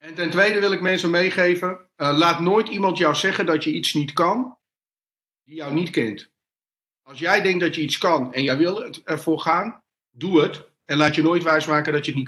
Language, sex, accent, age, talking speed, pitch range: Dutch, male, Dutch, 50-69, 220 wpm, 140-170 Hz